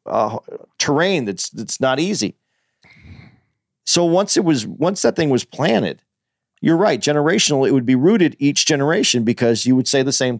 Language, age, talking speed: English, 40-59, 175 wpm